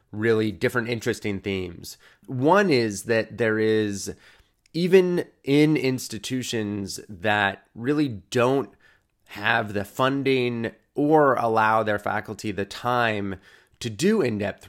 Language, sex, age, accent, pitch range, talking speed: English, male, 30-49, American, 100-125 Hz, 110 wpm